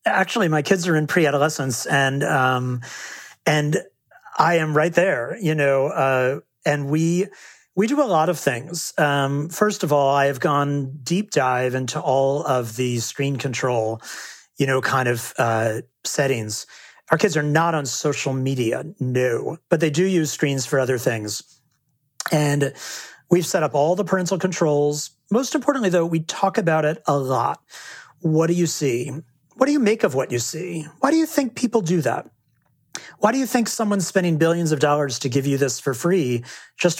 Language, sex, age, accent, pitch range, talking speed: English, male, 40-59, American, 140-195 Hz, 185 wpm